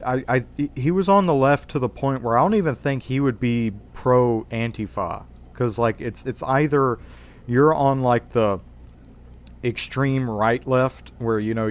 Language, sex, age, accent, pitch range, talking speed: English, male, 40-59, American, 105-130 Hz, 180 wpm